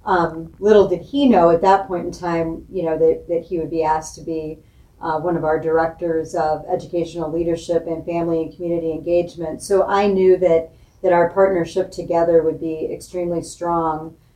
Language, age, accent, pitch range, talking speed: English, 40-59, American, 160-180 Hz, 190 wpm